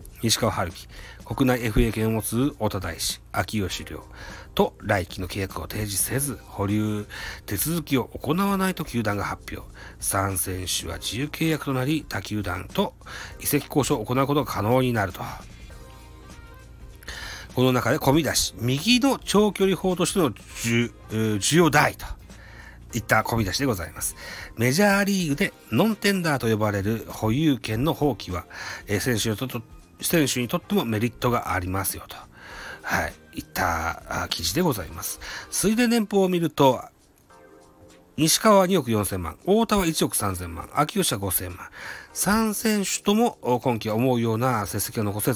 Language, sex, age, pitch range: Japanese, male, 40-59, 100-145 Hz